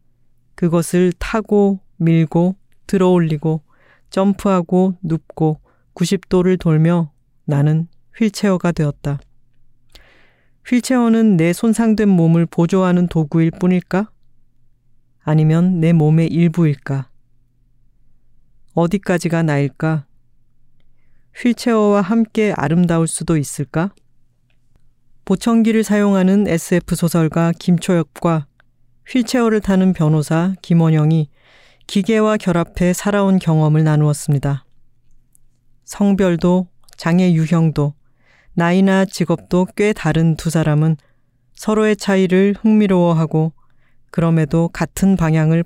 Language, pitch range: Korean, 145-185 Hz